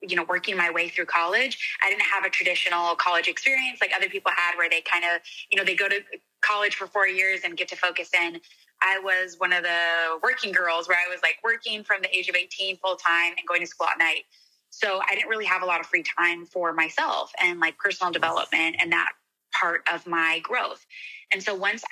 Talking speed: 235 wpm